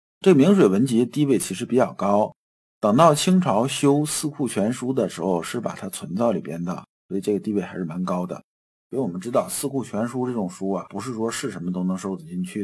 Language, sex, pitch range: Chinese, male, 100-145 Hz